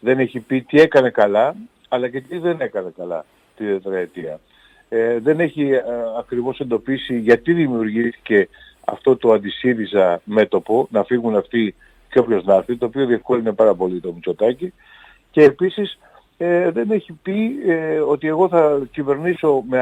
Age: 50-69